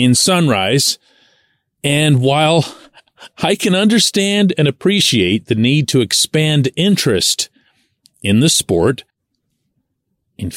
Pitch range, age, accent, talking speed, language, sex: 100-145 Hz, 40-59, American, 100 wpm, English, male